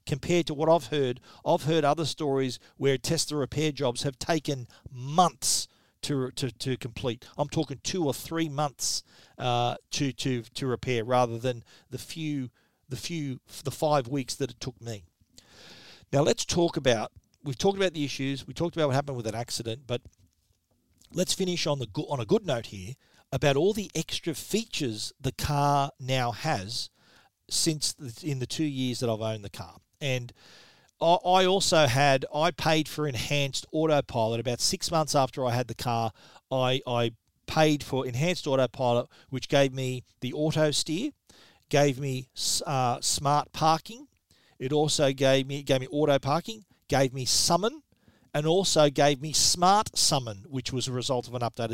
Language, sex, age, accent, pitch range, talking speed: English, male, 40-59, Australian, 125-155 Hz, 175 wpm